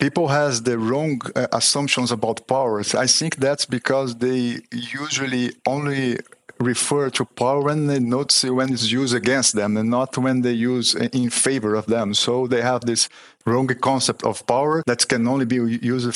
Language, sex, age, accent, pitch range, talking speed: English, male, 50-69, Brazilian, 120-140 Hz, 175 wpm